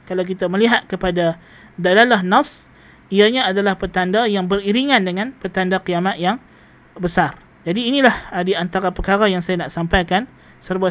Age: 20-39